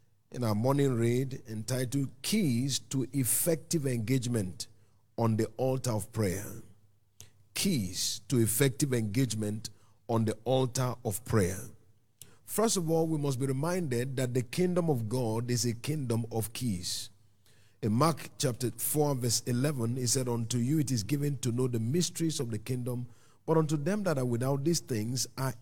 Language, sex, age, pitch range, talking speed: English, male, 50-69, 110-150 Hz, 160 wpm